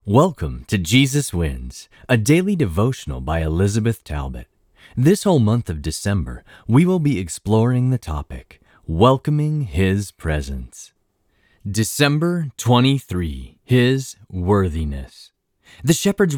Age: 30-49